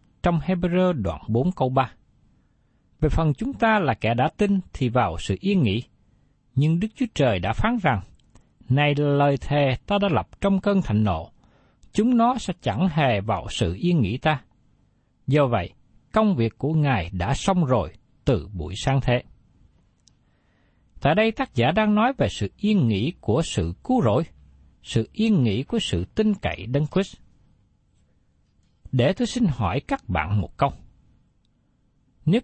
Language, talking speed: Vietnamese, 170 wpm